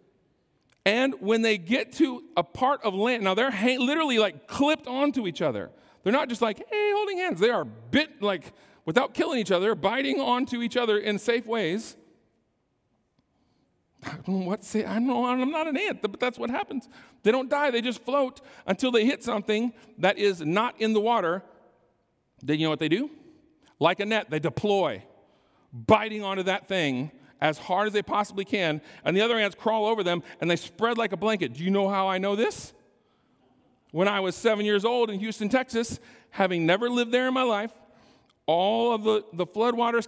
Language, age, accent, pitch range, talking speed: English, 40-59, American, 190-250 Hz, 190 wpm